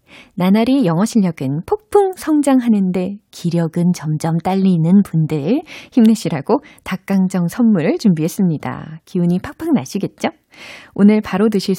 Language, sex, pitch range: Korean, female, 160-245 Hz